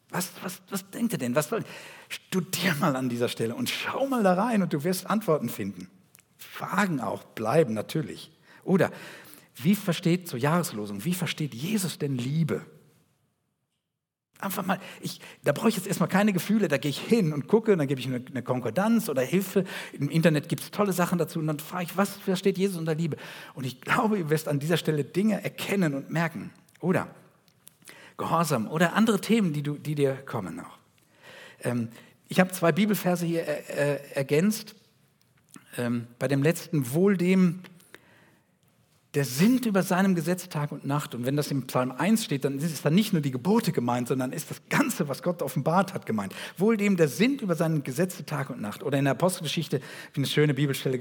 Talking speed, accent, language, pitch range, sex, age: 195 wpm, German, German, 140-190 Hz, male, 50-69